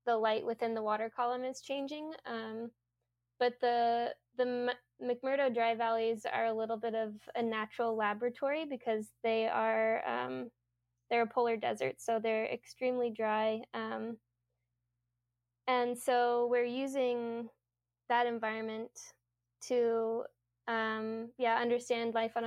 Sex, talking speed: female, 130 wpm